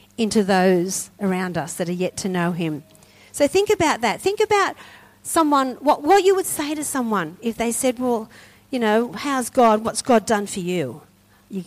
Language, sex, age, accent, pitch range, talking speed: English, female, 50-69, Australian, 170-245 Hz, 195 wpm